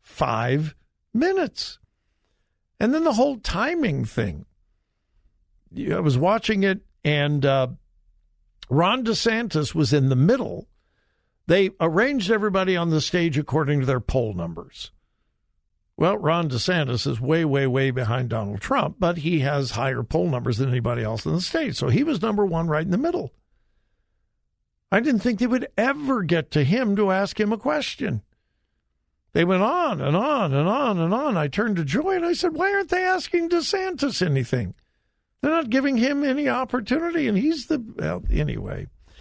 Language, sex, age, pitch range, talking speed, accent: English, male, 60-79, 140-230 Hz, 165 wpm, American